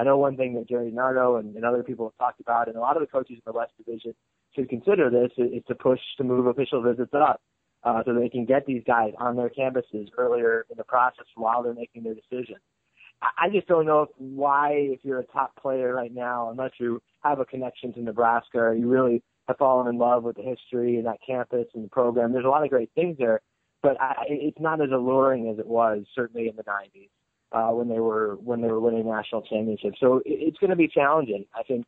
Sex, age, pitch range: male, 20-39, 115-130 Hz